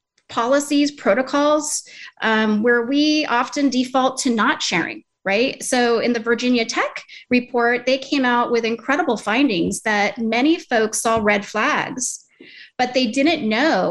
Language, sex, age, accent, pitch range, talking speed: English, female, 30-49, American, 220-265 Hz, 140 wpm